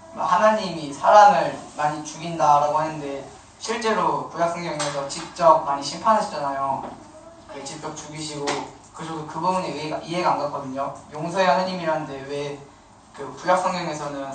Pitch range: 145-175 Hz